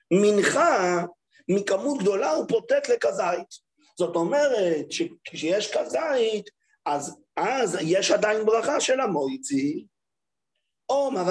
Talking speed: 95 wpm